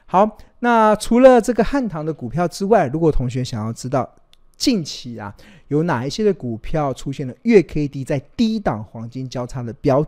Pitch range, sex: 120-165 Hz, male